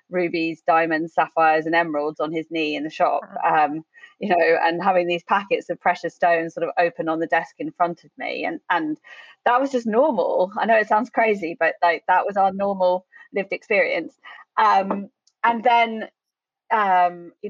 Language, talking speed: English, 190 wpm